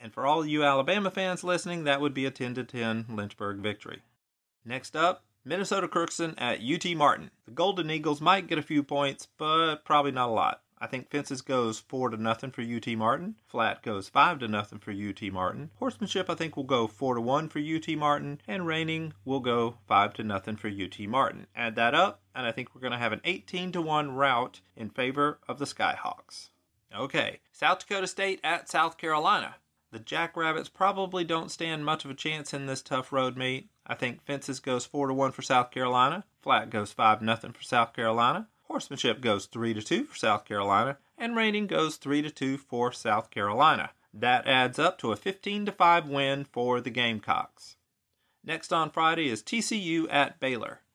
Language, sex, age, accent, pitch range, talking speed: English, male, 30-49, American, 120-165 Hz, 200 wpm